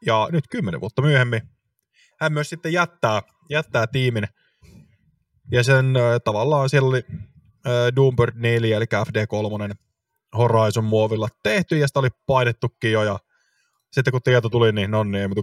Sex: male